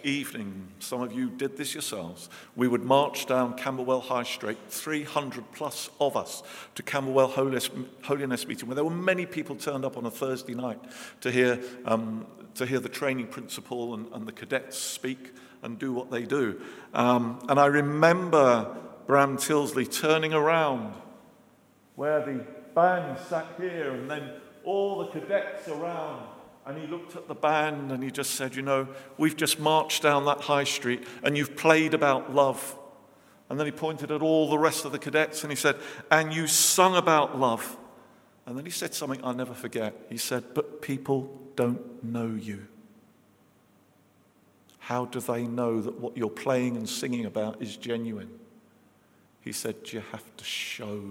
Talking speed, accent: 175 wpm, British